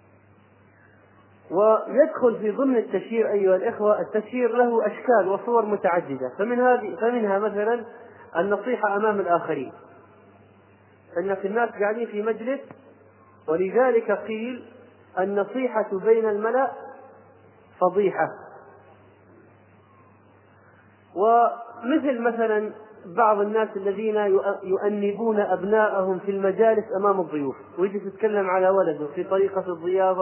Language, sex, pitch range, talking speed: Arabic, male, 175-225 Hz, 95 wpm